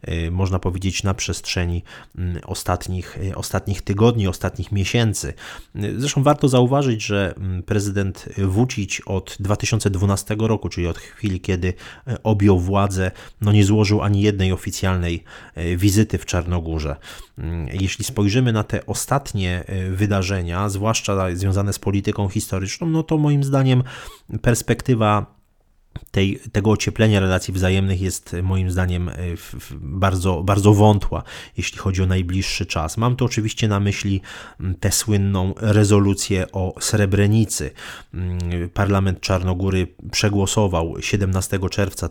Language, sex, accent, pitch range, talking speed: Polish, male, native, 90-105 Hz, 115 wpm